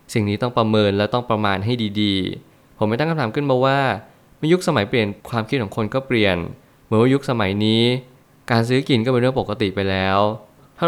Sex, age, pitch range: male, 20-39, 105-125 Hz